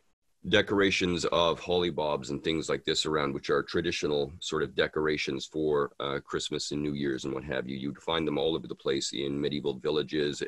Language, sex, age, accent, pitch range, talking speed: English, male, 40-59, American, 75-100 Hz, 200 wpm